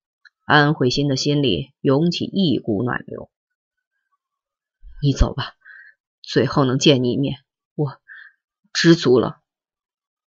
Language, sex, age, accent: Chinese, female, 30-49, native